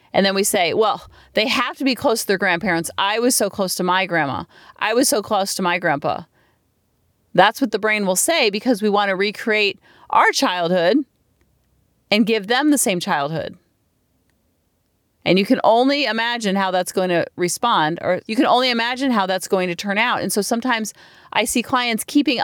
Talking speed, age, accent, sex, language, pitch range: 200 wpm, 40-59, American, female, English, 180-245 Hz